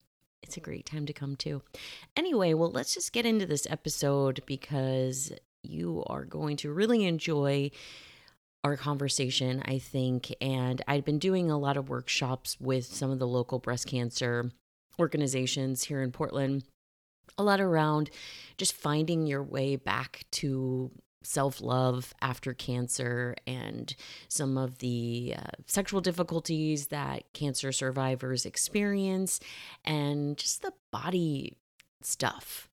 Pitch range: 130-155 Hz